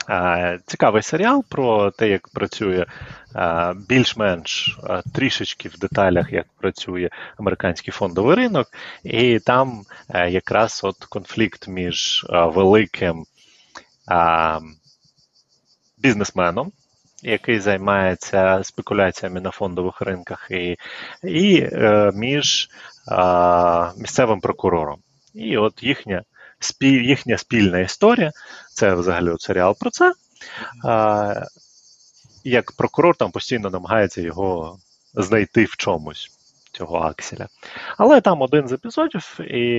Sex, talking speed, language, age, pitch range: male, 95 wpm, Ukrainian, 30-49, 90-125 Hz